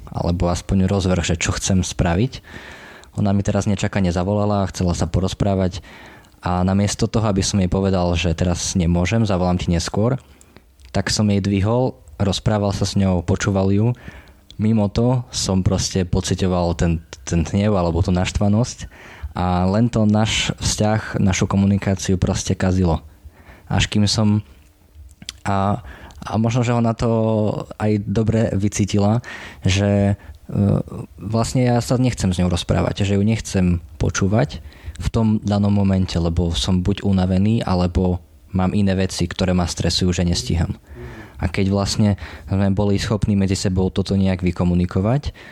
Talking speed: 145 wpm